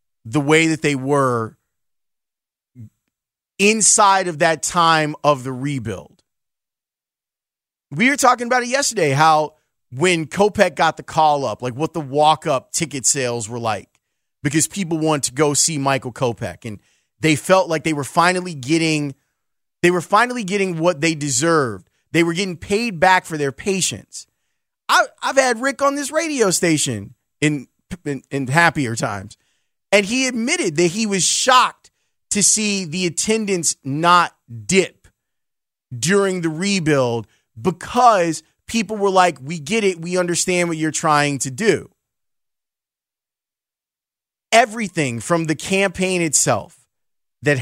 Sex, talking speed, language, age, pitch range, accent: male, 140 wpm, English, 30-49, 140-185 Hz, American